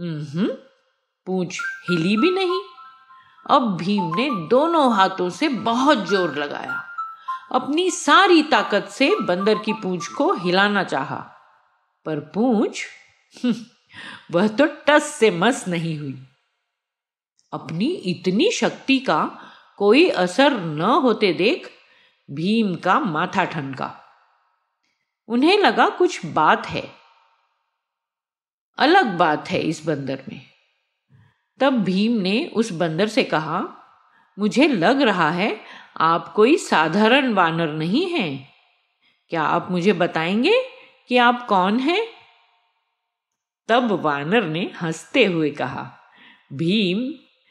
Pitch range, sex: 175-265 Hz, female